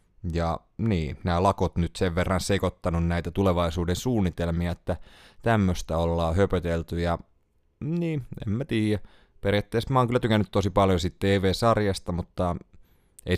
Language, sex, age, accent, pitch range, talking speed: Finnish, male, 30-49, native, 85-105 Hz, 130 wpm